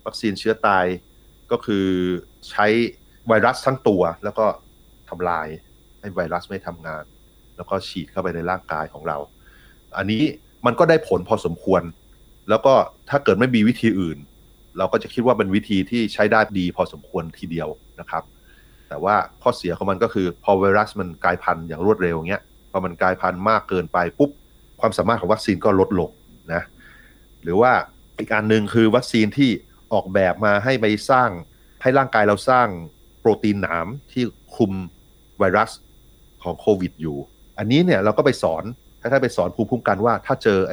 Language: Thai